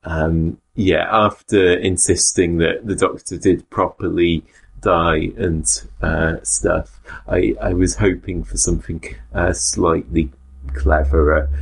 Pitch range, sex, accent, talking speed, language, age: 80-90 Hz, male, British, 115 wpm, English, 30-49